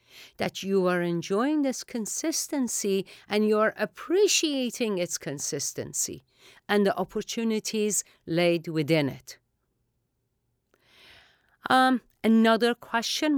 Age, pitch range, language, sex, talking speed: 50-69, 160-235 Hz, English, female, 95 wpm